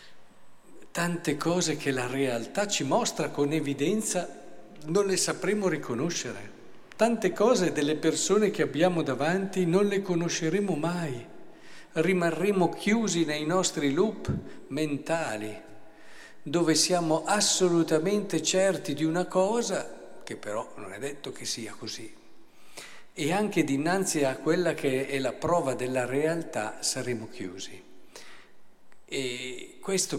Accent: native